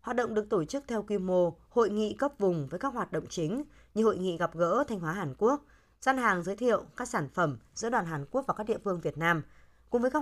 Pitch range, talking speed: 170-230 Hz, 270 wpm